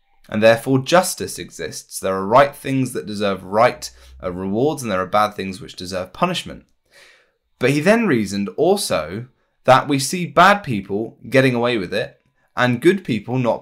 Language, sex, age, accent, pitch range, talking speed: English, male, 20-39, British, 95-140 Hz, 170 wpm